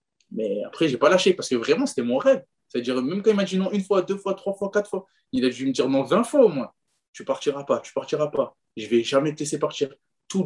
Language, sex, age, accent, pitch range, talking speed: French, male, 20-39, French, 120-185 Hz, 305 wpm